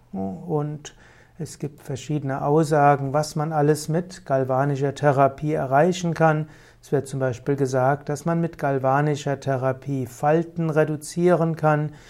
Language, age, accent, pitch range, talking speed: German, 60-79, German, 140-160 Hz, 130 wpm